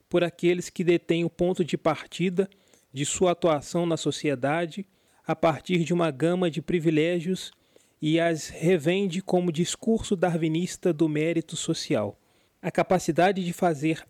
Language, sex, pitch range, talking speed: Portuguese, male, 155-185 Hz, 140 wpm